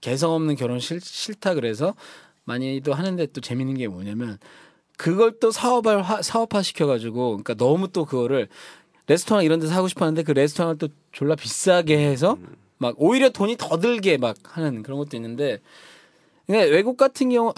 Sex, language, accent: male, Korean, native